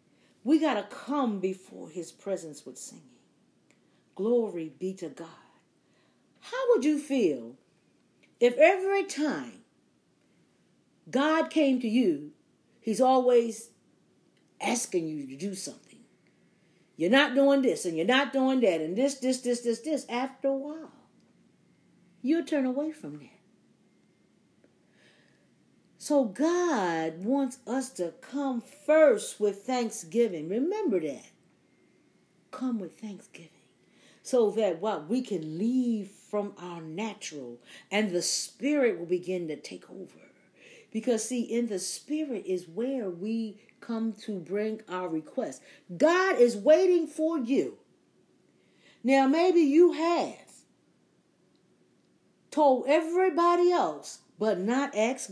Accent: American